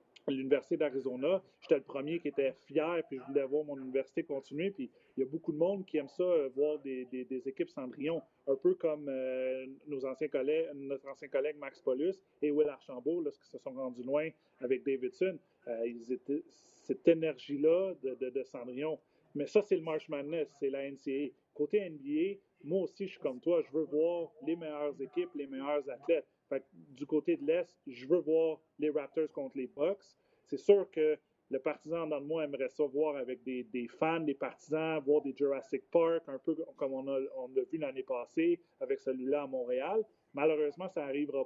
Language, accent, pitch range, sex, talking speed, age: French, Canadian, 135-170 Hz, male, 200 wpm, 40-59